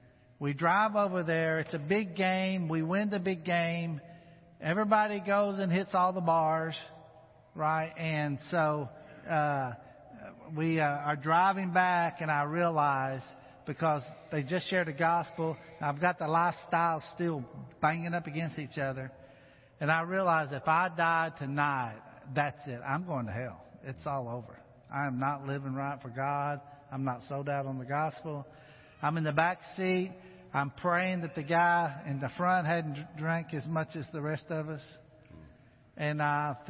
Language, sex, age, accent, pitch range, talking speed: English, male, 50-69, American, 145-180 Hz, 165 wpm